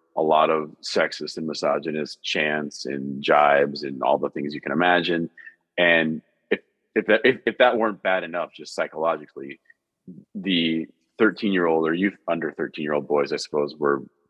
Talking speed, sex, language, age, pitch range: 175 wpm, male, English, 30-49, 75-90 Hz